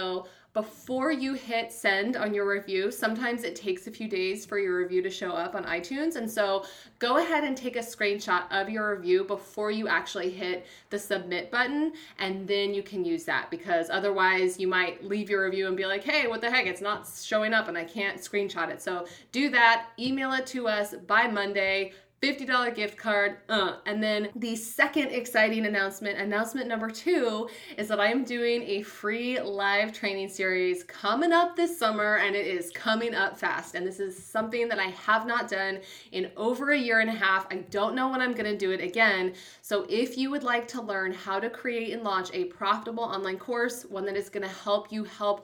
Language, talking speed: English, 215 wpm